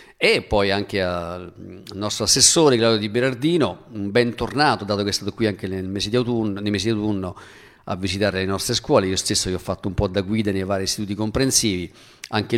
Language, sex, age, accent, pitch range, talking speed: Italian, male, 50-69, native, 100-120 Hz, 200 wpm